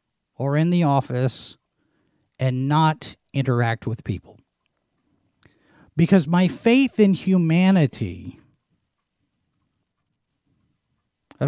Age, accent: 40-59, American